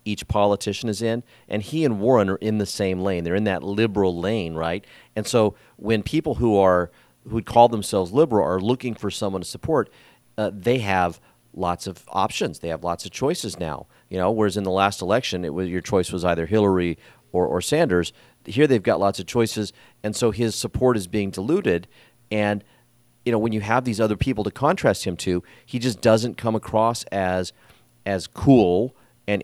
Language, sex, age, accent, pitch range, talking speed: English, male, 40-59, American, 95-115 Hz, 200 wpm